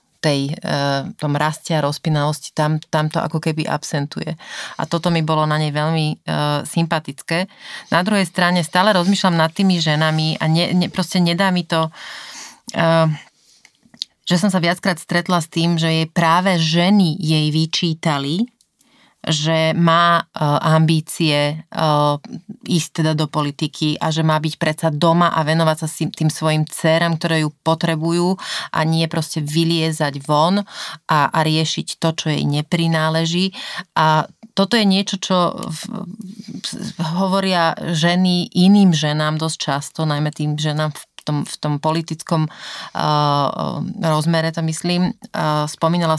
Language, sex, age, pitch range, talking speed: Slovak, female, 30-49, 155-175 Hz, 135 wpm